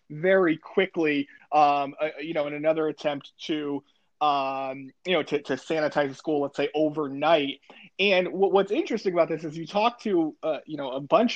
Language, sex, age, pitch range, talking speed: English, male, 20-39, 155-195 Hz, 180 wpm